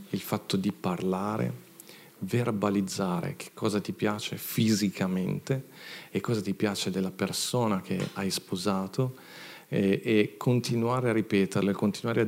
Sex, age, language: male, 40-59, Italian